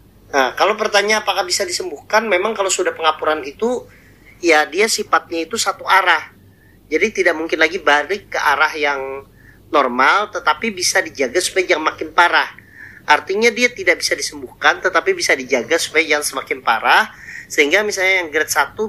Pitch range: 145-200 Hz